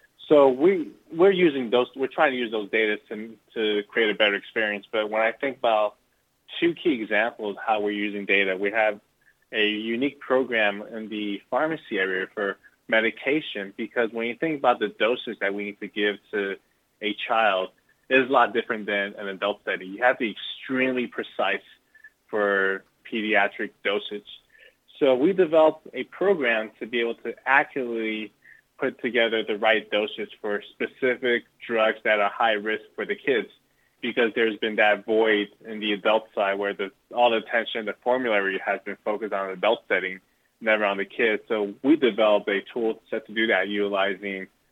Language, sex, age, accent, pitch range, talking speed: English, male, 20-39, American, 100-120 Hz, 180 wpm